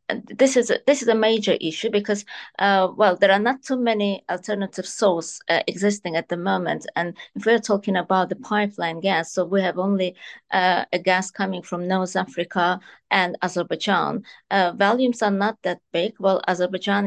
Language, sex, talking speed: English, female, 170 wpm